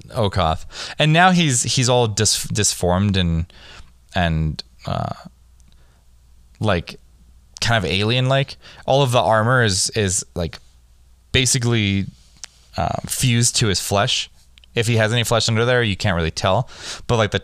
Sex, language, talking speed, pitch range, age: male, English, 150 wpm, 80-100 Hz, 20-39